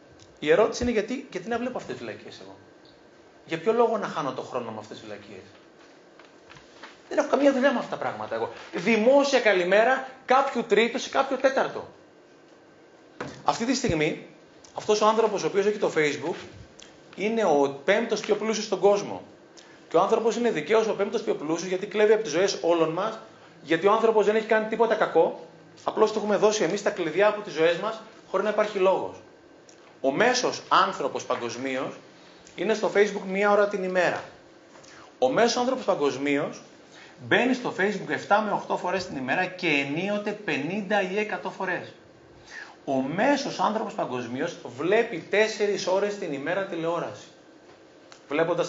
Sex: male